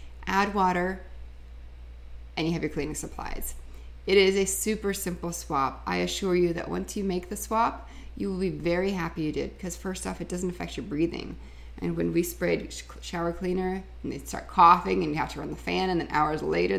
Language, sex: English, female